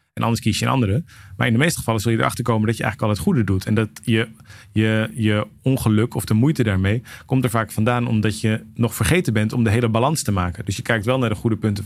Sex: male